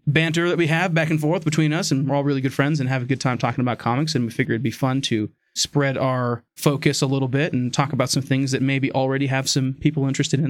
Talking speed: 280 wpm